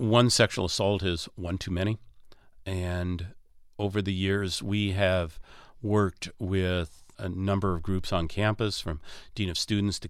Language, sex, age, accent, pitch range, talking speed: English, male, 50-69, American, 90-105 Hz, 155 wpm